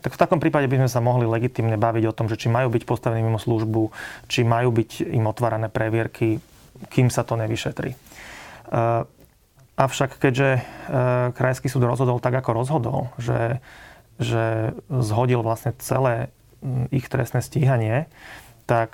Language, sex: Slovak, male